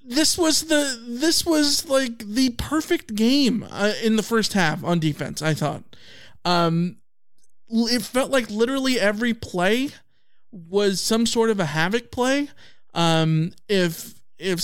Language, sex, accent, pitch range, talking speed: English, male, American, 165-225 Hz, 145 wpm